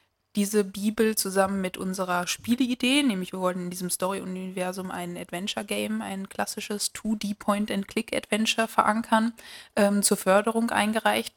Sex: female